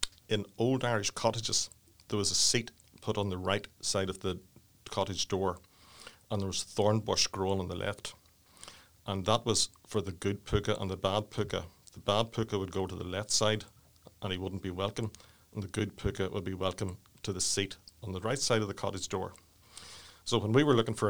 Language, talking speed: English, 215 wpm